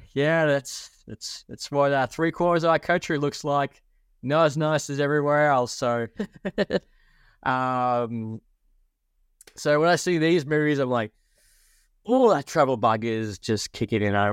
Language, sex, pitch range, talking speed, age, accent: English, male, 105-150 Hz, 155 wpm, 20-39, Australian